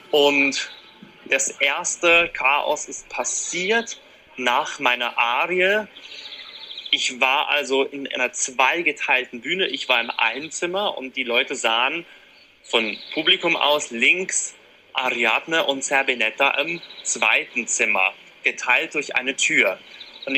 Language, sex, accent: German, male, German